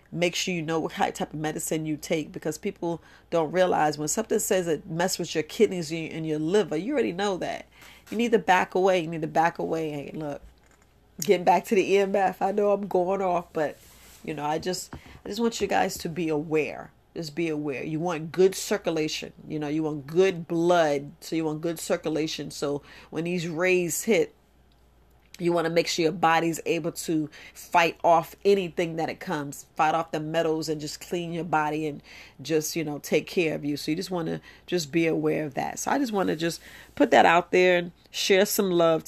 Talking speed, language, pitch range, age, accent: 220 wpm, English, 155-190 Hz, 40-59, American